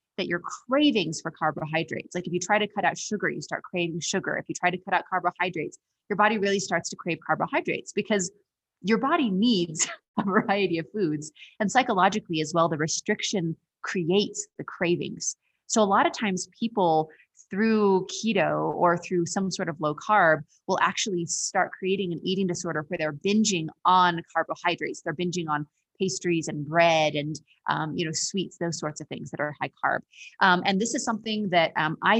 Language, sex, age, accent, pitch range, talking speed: English, female, 30-49, American, 165-200 Hz, 190 wpm